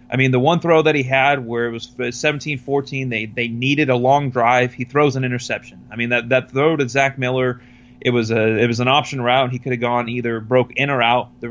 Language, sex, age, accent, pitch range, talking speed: English, male, 30-49, American, 120-140 Hz, 255 wpm